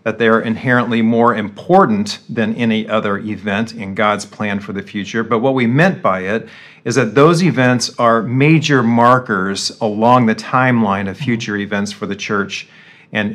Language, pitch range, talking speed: English, 110-135 Hz, 175 wpm